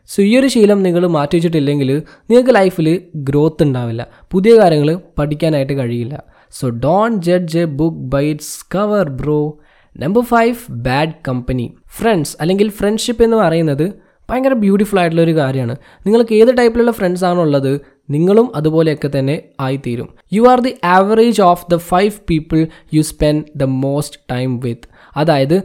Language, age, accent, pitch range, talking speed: Malayalam, 20-39, native, 145-200 Hz, 140 wpm